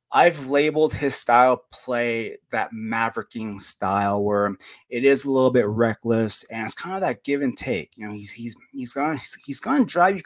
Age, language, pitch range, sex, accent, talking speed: 20-39, English, 105-130 Hz, male, American, 195 wpm